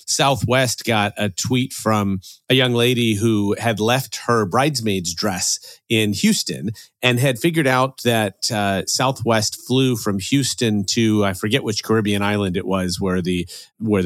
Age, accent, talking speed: 30-49, American, 160 wpm